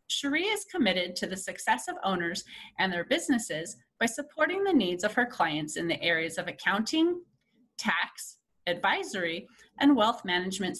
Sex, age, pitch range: female, 30-49, 185-285 Hz